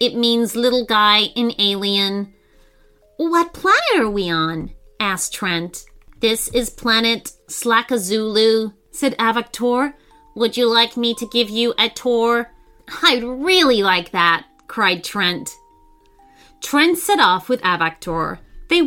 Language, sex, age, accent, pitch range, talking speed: English, female, 30-49, American, 185-270 Hz, 125 wpm